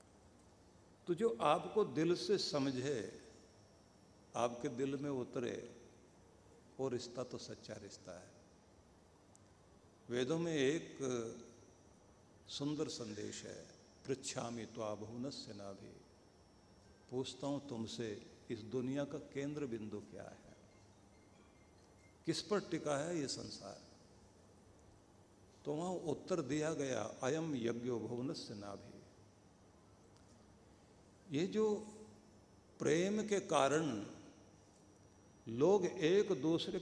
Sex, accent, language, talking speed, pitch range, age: male, native, Hindi, 100 wpm, 105-140 Hz, 60-79